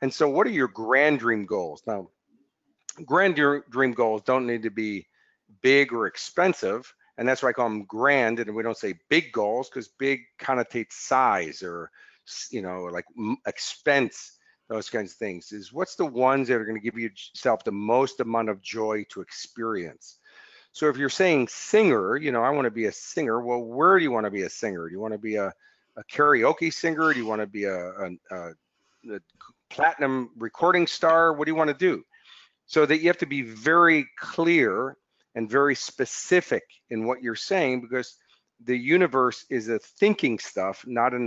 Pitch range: 115-155 Hz